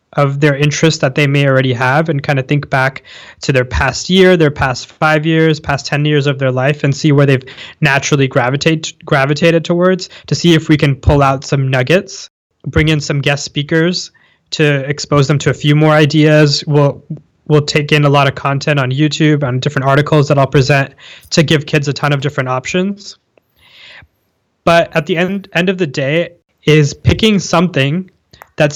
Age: 20-39